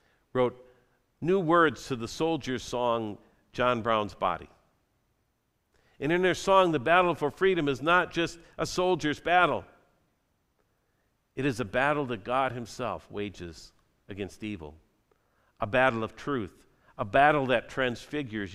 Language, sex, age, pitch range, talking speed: English, male, 50-69, 100-135 Hz, 135 wpm